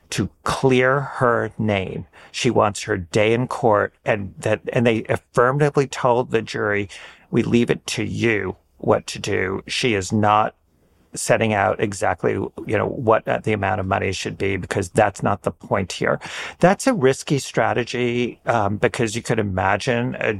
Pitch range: 105-135 Hz